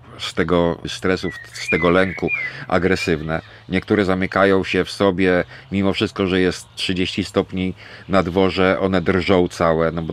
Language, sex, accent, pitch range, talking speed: Polish, male, native, 90-105 Hz, 150 wpm